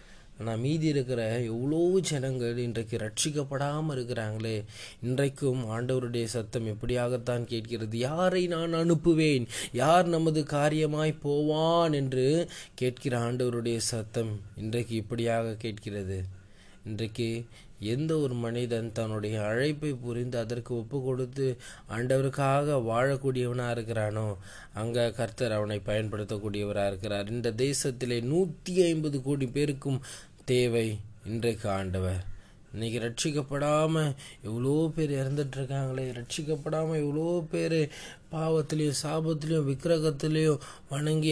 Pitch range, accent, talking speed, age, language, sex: 115-150 Hz, native, 95 wpm, 20-39, Tamil, male